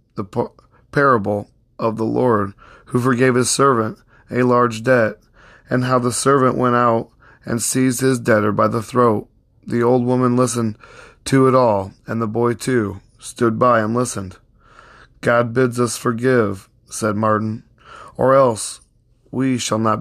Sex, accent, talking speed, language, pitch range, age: male, American, 155 wpm, English, 110-125 Hz, 20-39